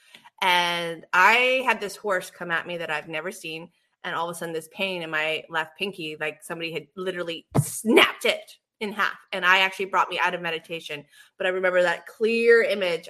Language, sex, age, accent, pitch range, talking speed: English, female, 20-39, American, 175-220 Hz, 205 wpm